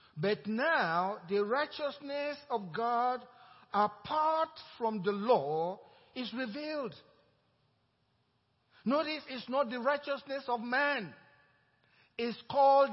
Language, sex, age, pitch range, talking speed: English, male, 50-69, 240-310 Hz, 95 wpm